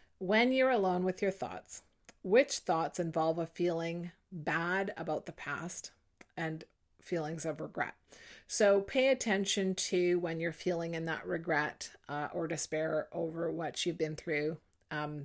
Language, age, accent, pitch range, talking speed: English, 30-49, American, 160-195 Hz, 150 wpm